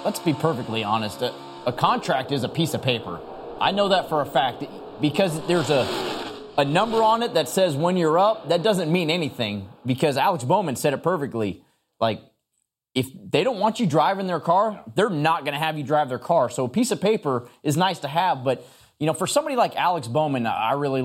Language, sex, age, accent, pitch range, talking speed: English, male, 20-39, American, 130-180 Hz, 220 wpm